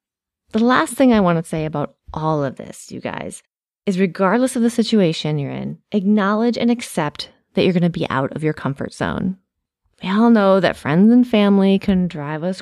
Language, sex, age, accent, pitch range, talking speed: English, female, 30-49, American, 170-235 Hz, 205 wpm